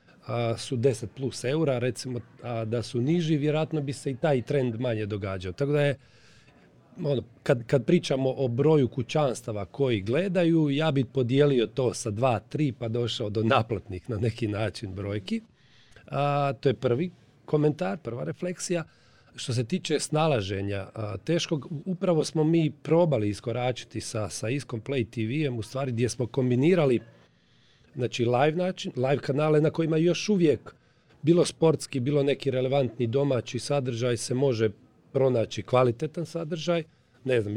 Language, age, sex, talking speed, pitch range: Croatian, 40-59, male, 155 wpm, 115-150 Hz